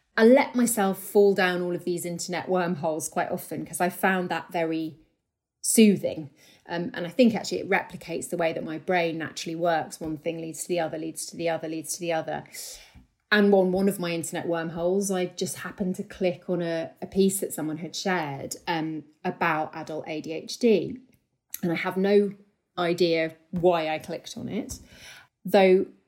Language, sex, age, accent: English, female, 30-49, British